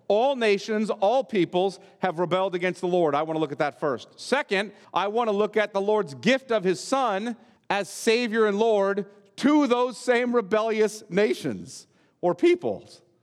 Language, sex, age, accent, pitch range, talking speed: English, male, 40-59, American, 150-205 Hz, 175 wpm